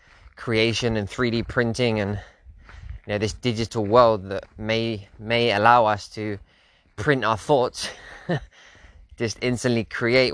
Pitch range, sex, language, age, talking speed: 100-115 Hz, male, English, 20-39, 130 wpm